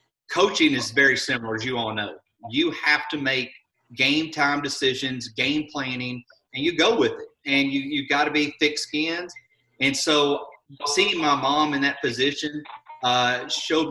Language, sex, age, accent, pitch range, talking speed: English, male, 30-49, American, 125-150 Hz, 175 wpm